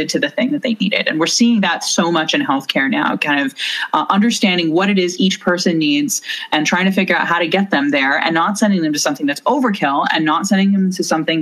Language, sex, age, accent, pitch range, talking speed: English, female, 30-49, American, 155-215 Hz, 255 wpm